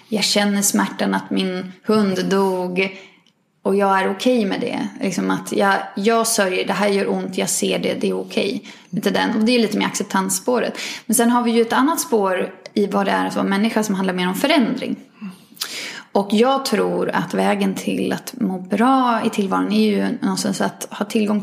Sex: female